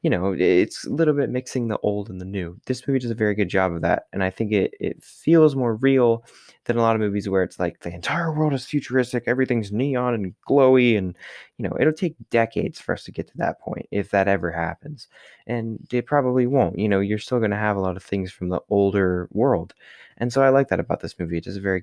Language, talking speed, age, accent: English, 260 wpm, 20-39, American